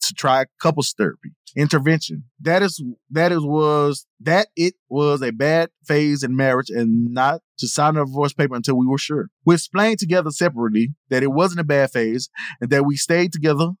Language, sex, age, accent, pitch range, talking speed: English, male, 20-39, American, 135-155 Hz, 190 wpm